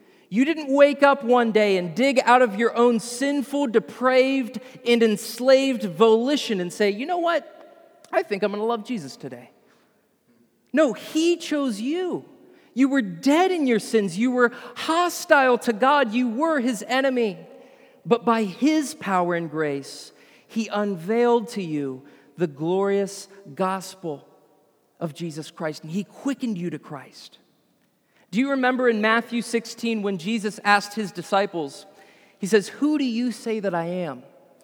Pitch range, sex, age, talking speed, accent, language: 195-260 Hz, male, 40-59, 160 wpm, American, English